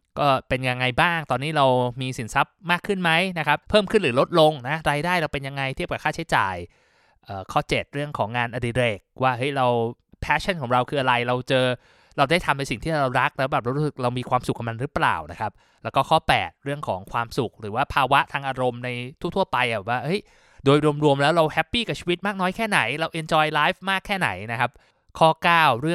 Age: 20-39